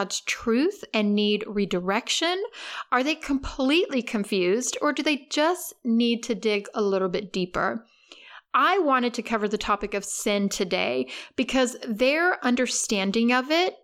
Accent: American